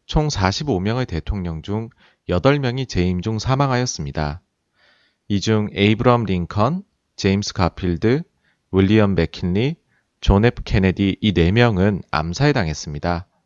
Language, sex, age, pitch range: Korean, male, 30-49, 95-135 Hz